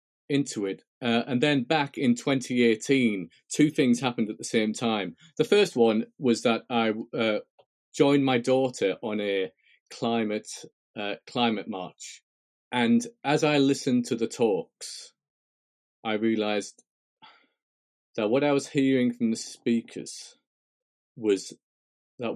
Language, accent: English, British